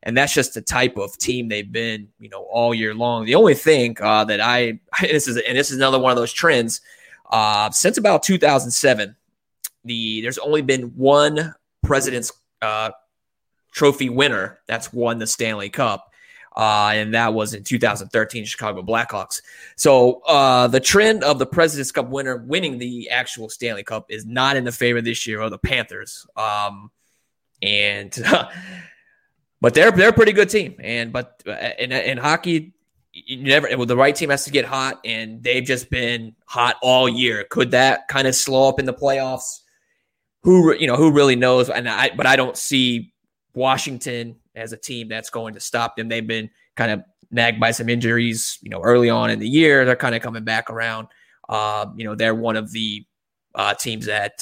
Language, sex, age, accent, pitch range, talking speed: English, male, 20-39, American, 110-135 Hz, 190 wpm